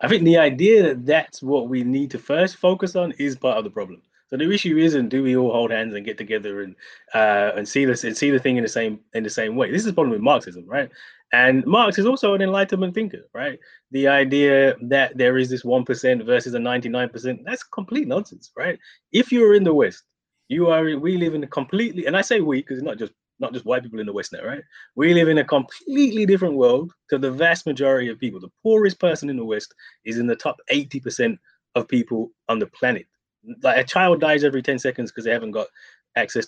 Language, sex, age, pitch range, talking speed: English, male, 20-39, 125-180 Hz, 240 wpm